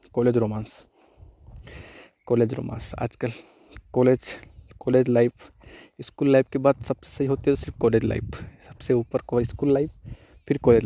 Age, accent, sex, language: 20-39, native, male, Hindi